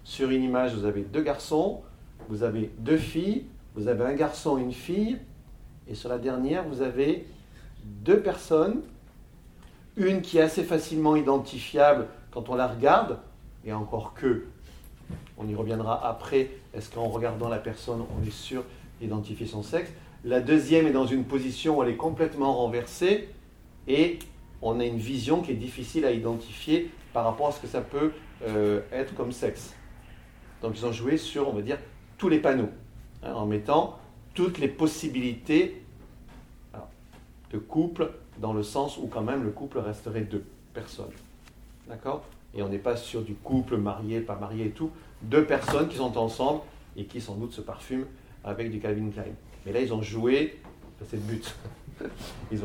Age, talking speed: 50-69, 175 wpm